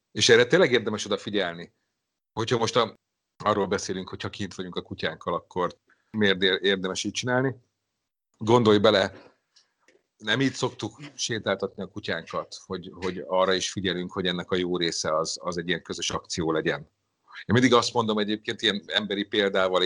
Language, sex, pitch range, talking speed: Hungarian, male, 90-110 Hz, 160 wpm